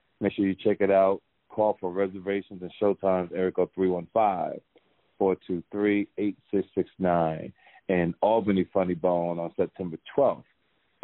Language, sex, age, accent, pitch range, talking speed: English, male, 40-59, American, 90-100 Hz, 110 wpm